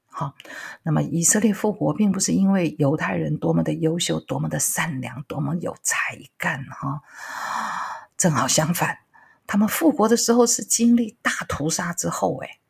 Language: Chinese